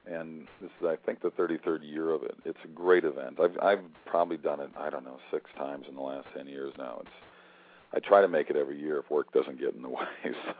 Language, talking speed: English, 265 wpm